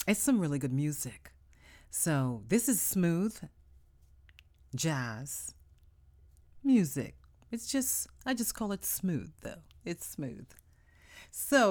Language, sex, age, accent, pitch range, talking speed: English, female, 40-59, American, 110-175 Hz, 115 wpm